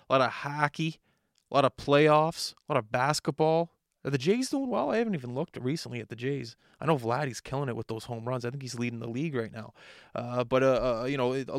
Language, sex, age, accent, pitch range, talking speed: English, male, 20-39, American, 115-130 Hz, 255 wpm